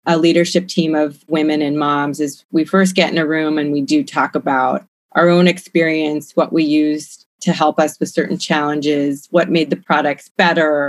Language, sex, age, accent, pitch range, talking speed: English, female, 30-49, American, 150-185 Hz, 200 wpm